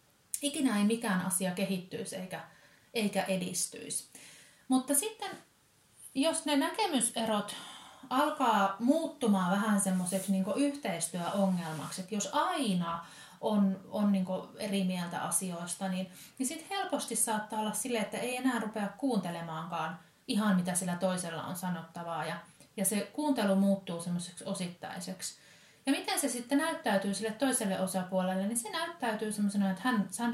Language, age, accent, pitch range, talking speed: Finnish, 30-49, native, 180-245 Hz, 135 wpm